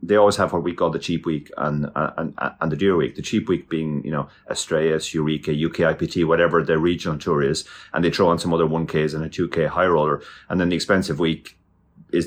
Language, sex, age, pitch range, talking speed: English, male, 30-49, 75-95 Hz, 240 wpm